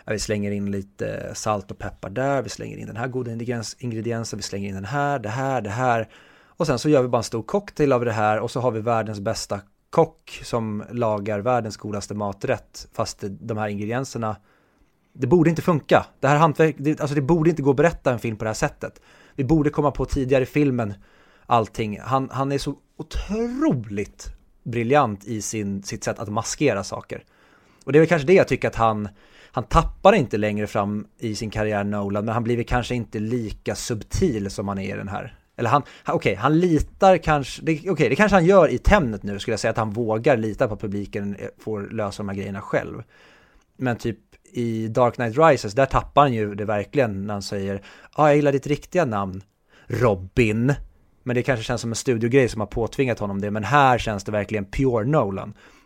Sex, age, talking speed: male, 30-49, 215 wpm